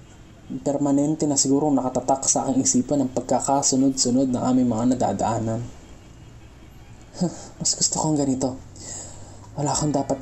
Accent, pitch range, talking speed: native, 115-145 Hz, 115 wpm